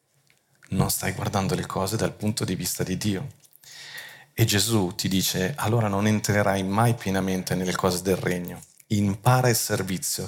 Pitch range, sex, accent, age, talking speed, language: 95-115 Hz, male, native, 40-59, 160 wpm, Italian